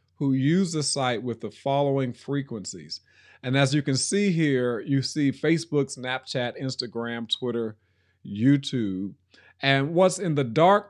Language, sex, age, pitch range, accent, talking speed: English, male, 40-59, 115-155 Hz, American, 145 wpm